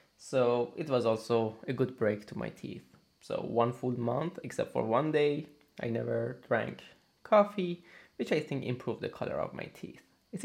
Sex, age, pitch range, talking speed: male, 20-39, 105-135 Hz, 185 wpm